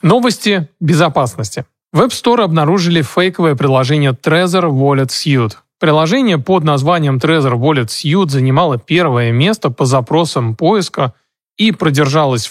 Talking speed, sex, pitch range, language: 120 wpm, male, 135-175 Hz, Russian